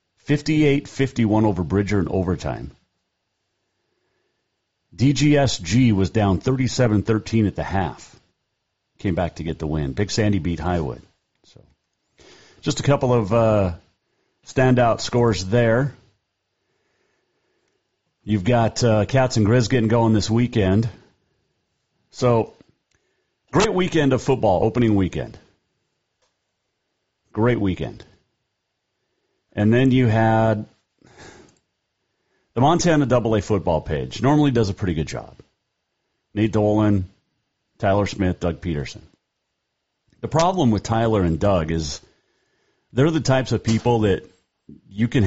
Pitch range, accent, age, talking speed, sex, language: 100-125 Hz, American, 40-59, 115 wpm, male, English